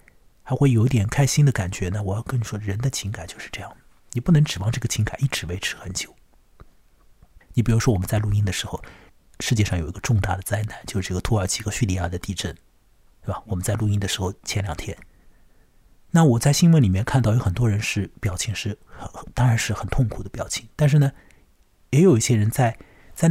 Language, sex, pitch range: Chinese, male, 95-130 Hz